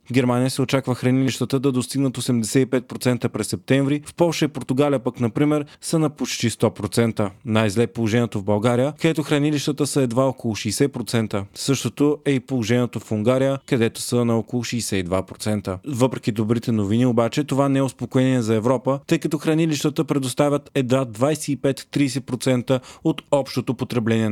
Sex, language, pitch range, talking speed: male, Bulgarian, 115-135 Hz, 150 wpm